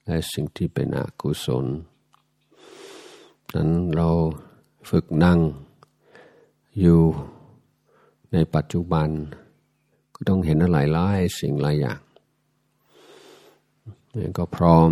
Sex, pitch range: male, 75-85 Hz